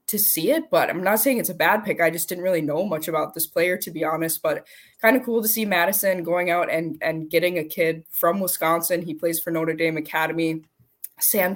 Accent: American